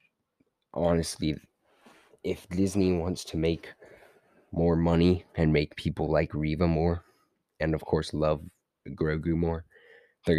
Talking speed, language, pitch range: 120 wpm, English, 75-90 Hz